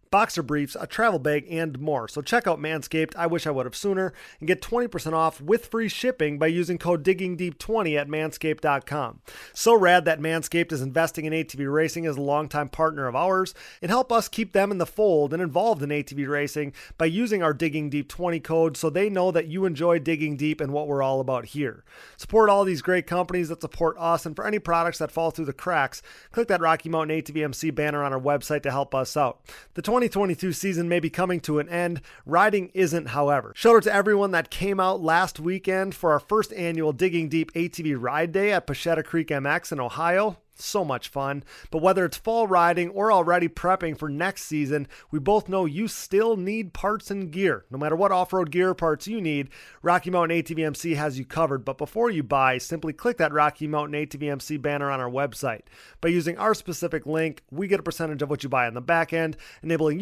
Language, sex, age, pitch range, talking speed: English, male, 30-49, 150-190 Hz, 210 wpm